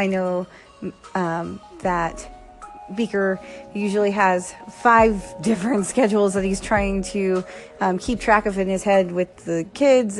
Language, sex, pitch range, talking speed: English, female, 185-235 Hz, 140 wpm